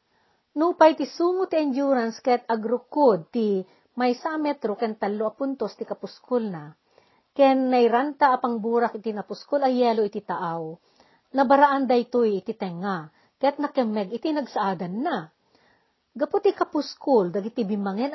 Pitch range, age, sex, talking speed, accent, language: 205-275 Hz, 50-69, female, 140 wpm, native, Filipino